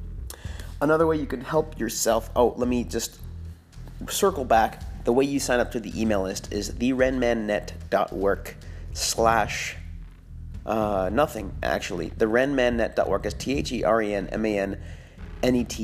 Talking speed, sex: 115 wpm, male